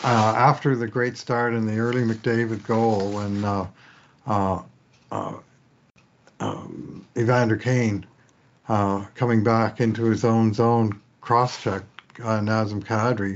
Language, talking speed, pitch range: English, 120 wpm, 105-120 Hz